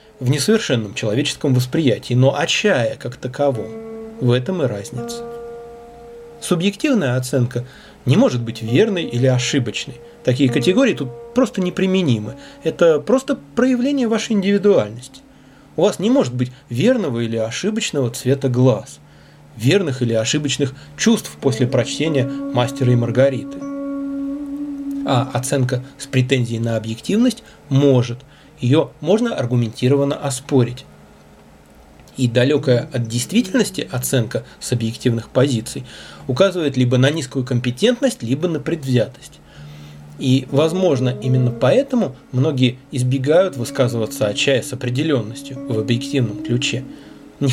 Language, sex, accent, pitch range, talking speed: Russian, male, native, 125-165 Hz, 115 wpm